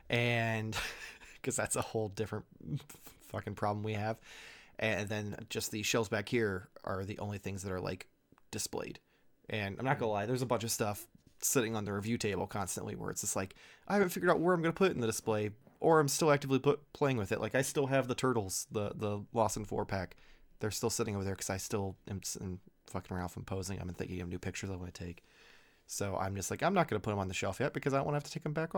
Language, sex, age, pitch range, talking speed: English, male, 20-39, 100-120 Hz, 250 wpm